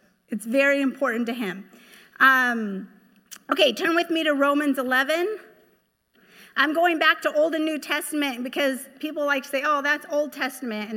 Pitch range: 240-300 Hz